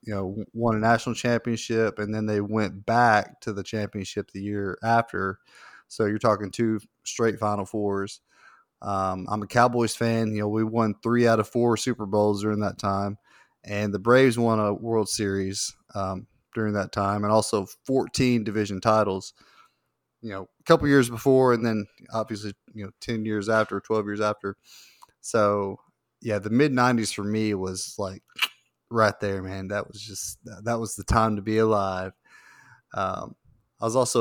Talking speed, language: 175 wpm, English